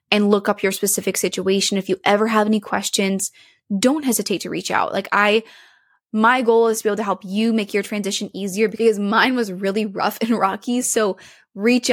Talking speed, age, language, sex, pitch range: 205 wpm, 20-39, English, female, 195-225 Hz